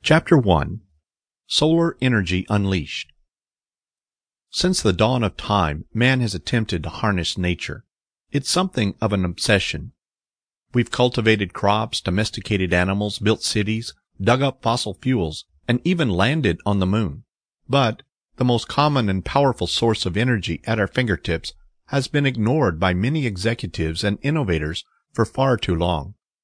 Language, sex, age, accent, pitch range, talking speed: English, male, 40-59, American, 95-125 Hz, 140 wpm